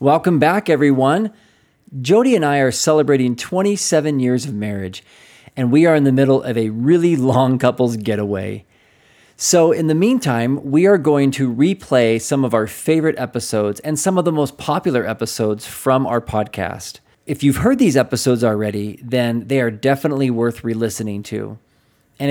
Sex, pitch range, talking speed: male, 110-145 Hz, 165 wpm